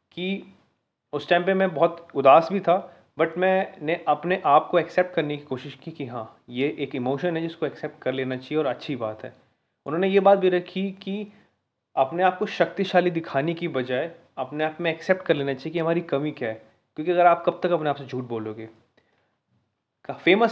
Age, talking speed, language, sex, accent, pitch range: 20-39, 205 wpm, Hindi, male, native, 130-170 Hz